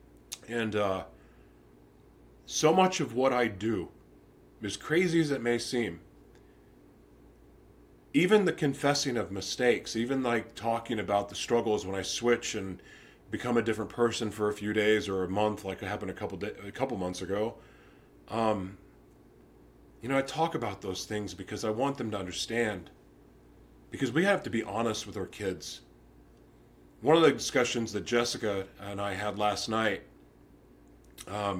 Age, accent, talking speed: 30-49, American, 160 wpm